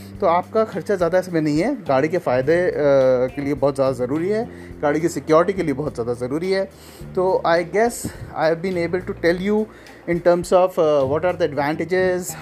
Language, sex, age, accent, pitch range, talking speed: Hindi, male, 30-49, native, 145-180 Hz, 205 wpm